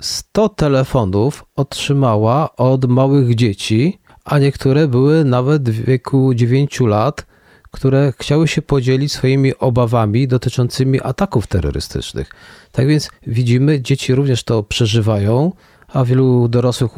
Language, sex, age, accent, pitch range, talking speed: Polish, male, 40-59, native, 110-135 Hz, 115 wpm